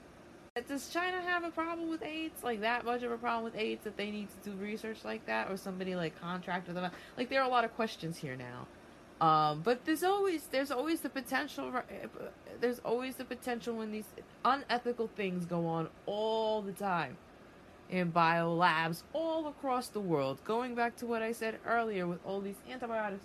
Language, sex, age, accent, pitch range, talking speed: English, female, 20-39, American, 180-240 Hz, 205 wpm